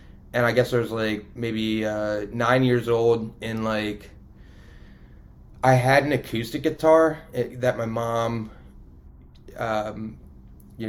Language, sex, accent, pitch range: English, male, American, 105-120 Hz